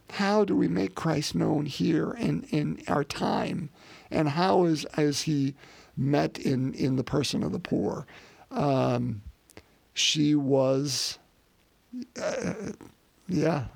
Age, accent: 50-69, American